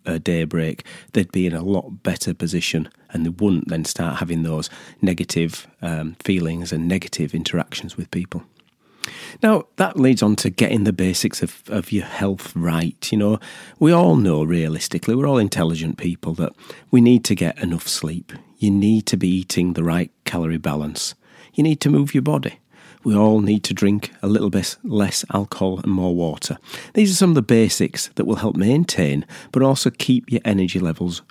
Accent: British